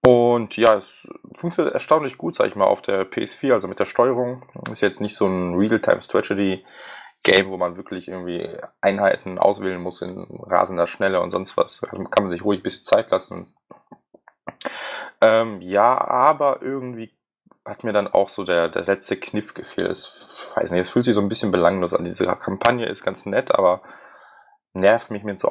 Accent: German